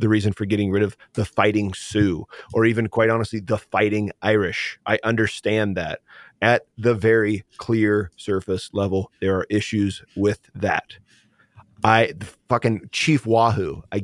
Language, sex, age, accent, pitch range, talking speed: English, male, 30-49, American, 100-120 Hz, 155 wpm